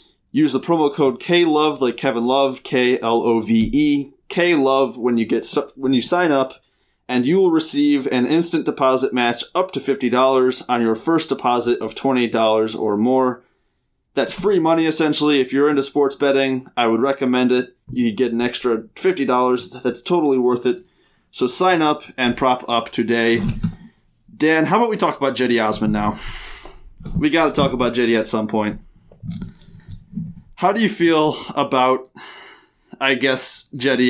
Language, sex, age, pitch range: English, male, 20-39, 120-155 Hz